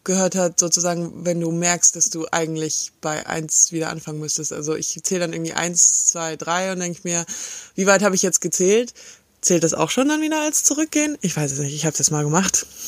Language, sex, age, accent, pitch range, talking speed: German, female, 20-39, German, 155-195 Hz, 225 wpm